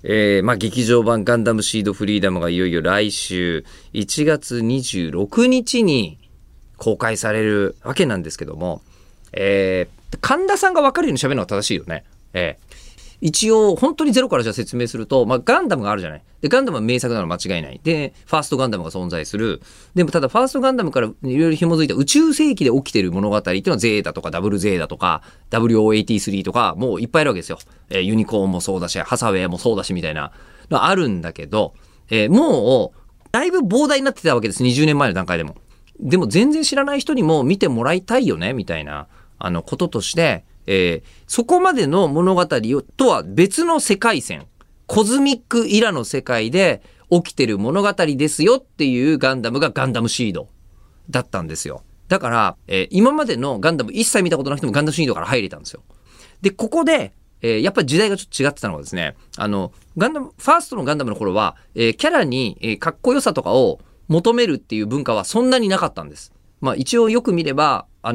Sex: male